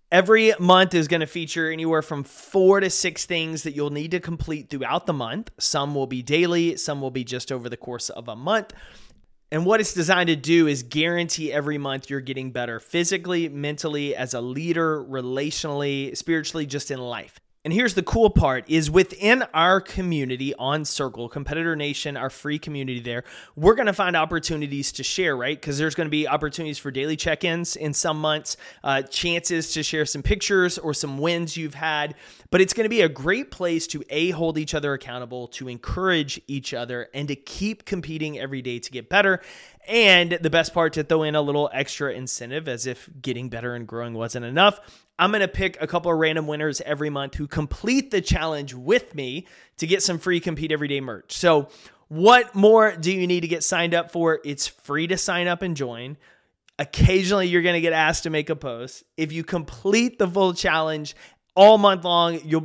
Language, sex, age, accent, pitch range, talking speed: English, male, 30-49, American, 140-175 Hz, 200 wpm